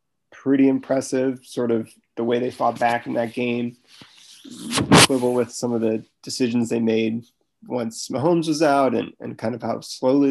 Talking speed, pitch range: 170 wpm, 115-130 Hz